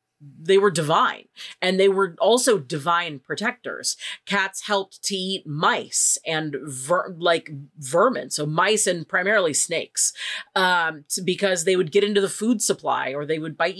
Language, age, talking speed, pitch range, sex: English, 30-49, 150 wpm, 155-205 Hz, female